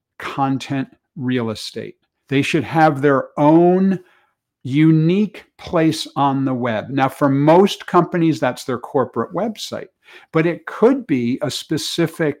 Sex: male